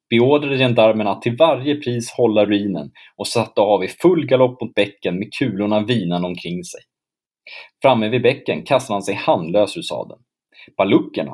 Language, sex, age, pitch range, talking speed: Swedish, male, 30-49, 100-145 Hz, 160 wpm